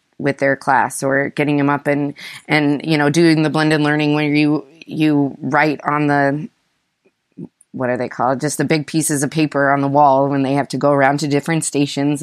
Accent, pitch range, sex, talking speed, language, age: American, 140-155 Hz, female, 210 wpm, English, 20-39